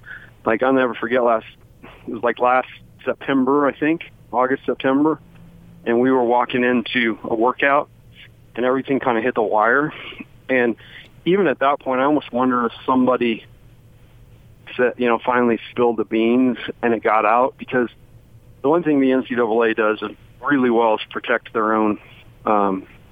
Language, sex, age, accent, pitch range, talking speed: English, male, 40-59, American, 110-130 Hz, 165 wpm